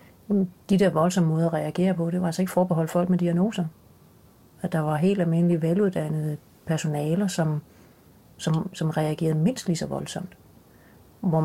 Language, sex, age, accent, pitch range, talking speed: Danish, female, 40-59, native, 145-175 Hz, 160 wpm